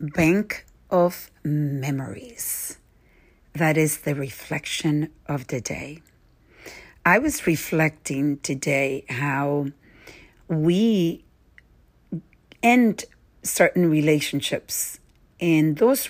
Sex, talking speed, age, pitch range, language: female, 80 wpm, 50-69, 145-170 Hz, English